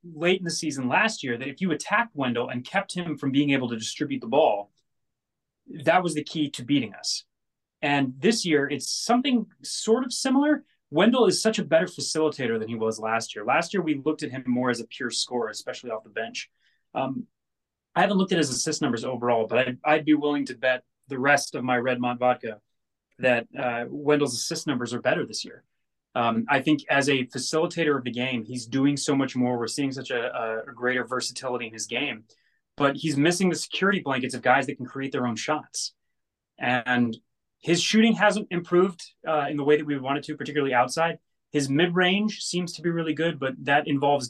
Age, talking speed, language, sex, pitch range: 30-49, 215 wpm, English, male, 125-155 Hz